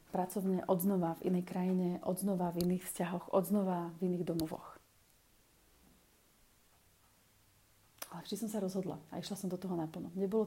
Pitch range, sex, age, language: 170-205 Hz, female, 30-49, Slovak